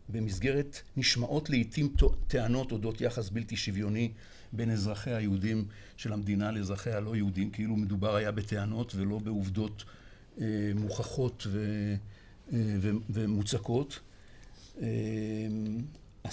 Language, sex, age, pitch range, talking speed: Hebrew, male, 60-79, 105-120 Hz, 105 wpm